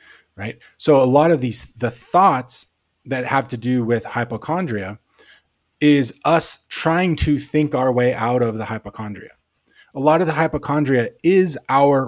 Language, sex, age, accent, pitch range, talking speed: English, male, 20-39, American, 115-150 Hz, 160 wpm